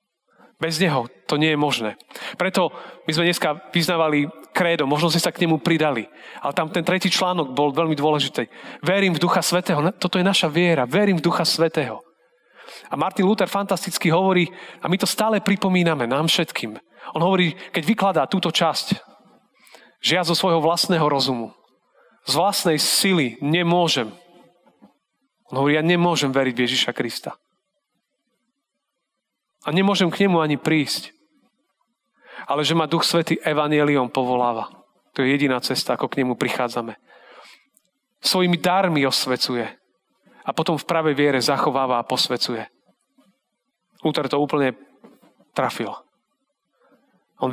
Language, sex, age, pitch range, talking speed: Slovak, male, 40-59, 140-180 Hz, 140 wpm